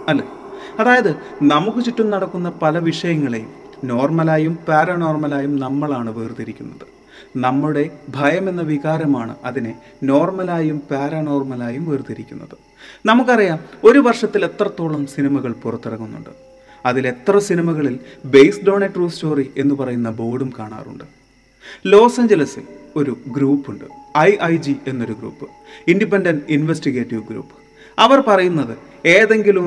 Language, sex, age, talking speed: Malayalam, male, 30-49, 95 wpm